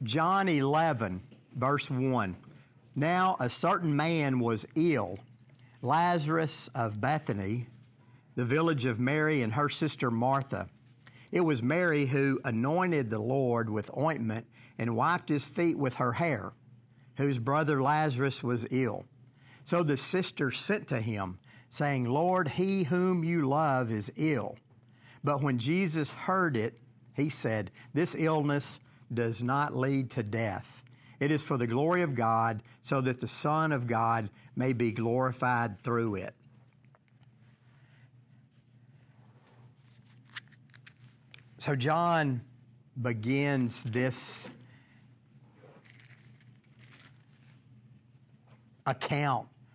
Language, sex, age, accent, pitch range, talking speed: English, male, 50-69, American, 120-140 Hz, 110 wpm